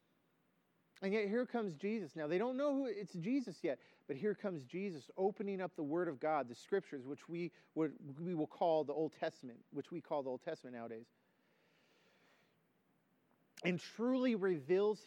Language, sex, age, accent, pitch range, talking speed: English, male, 40-59, American, 145-205 Hz, 170 wpm